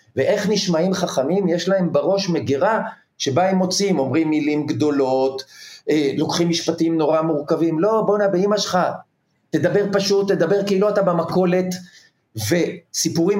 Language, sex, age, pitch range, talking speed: Hebrew, male, 50-69, 160-200 Hz, 135 wpm